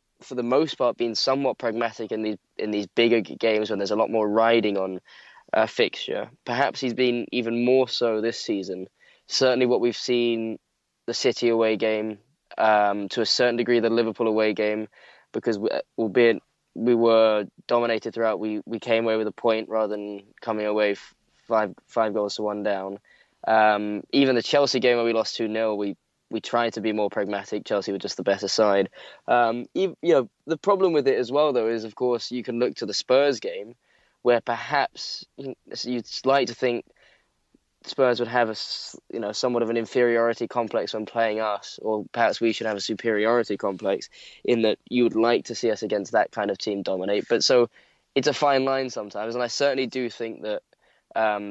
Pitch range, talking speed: 110-125 Hz, 200 wpm